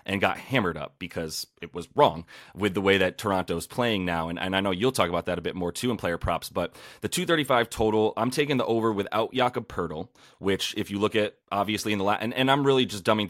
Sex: male